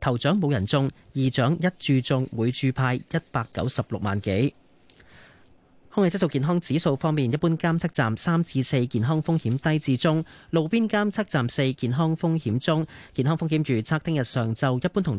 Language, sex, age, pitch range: Chinese, male, 30-49, 115-160 Hz